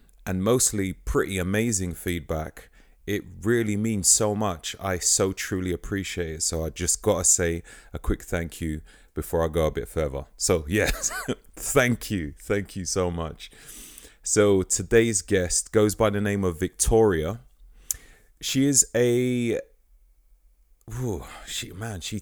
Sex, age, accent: male, 30-49, British